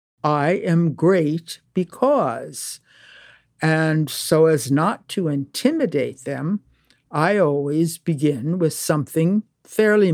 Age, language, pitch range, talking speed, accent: 60-79, English, 145-185 Hz, 100 wpm, American